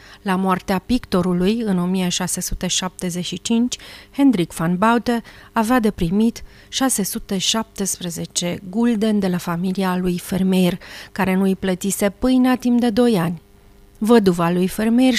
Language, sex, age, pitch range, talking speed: Romanian, female, 40-59, 180-225 Hz, 120 wpm